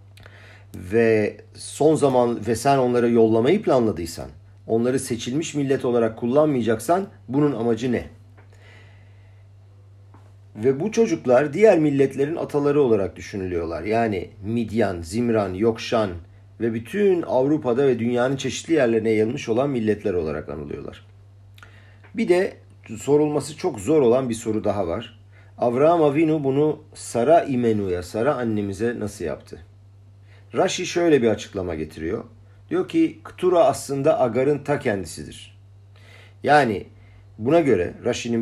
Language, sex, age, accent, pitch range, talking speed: Turkish, male, 50-69, native, 100-130 Hz, 115 wpm